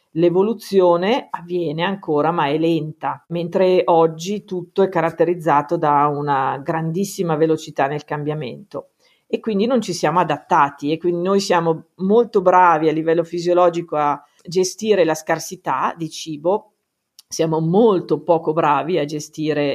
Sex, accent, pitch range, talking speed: female, native, 155-185 Hz, 135 wpm